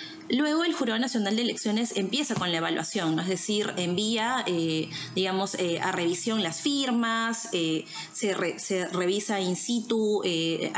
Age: 20-39